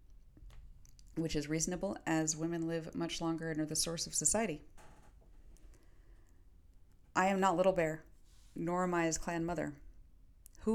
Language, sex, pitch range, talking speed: English, female, 160-185 Hz, 145 wpm